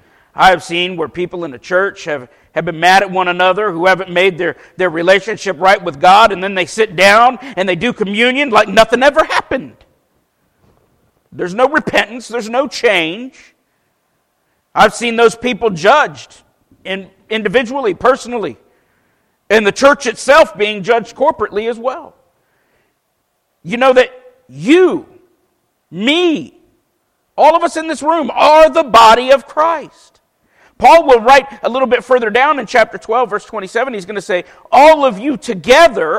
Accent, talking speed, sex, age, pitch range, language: American, 160 wpm, male, 50-69, 195-280 Hz, English